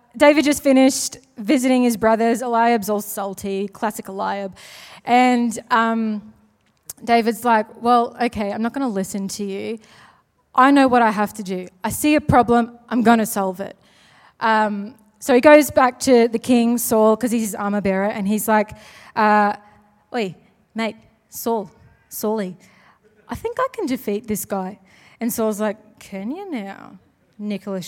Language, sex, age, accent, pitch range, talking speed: English, female, 20-39, Australian, 210-265 Hz, 165 wpm